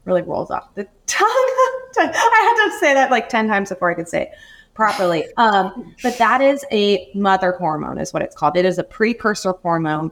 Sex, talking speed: female, 210 wpm